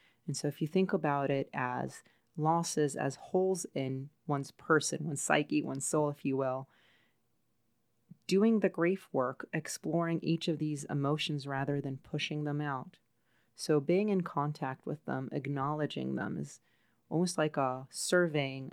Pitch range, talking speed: 135-155 Hz, 155 wpm